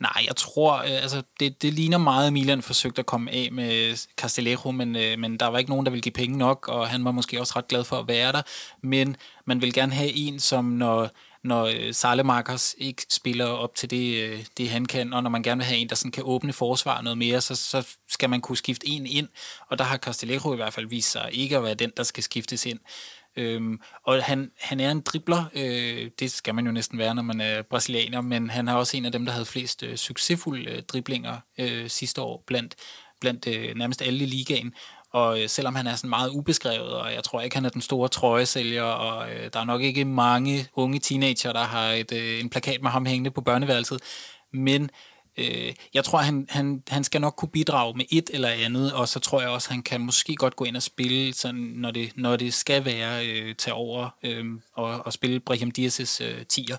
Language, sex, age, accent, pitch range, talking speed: Danish, male, 20-39, native, 120-135 Hz, 220 wpm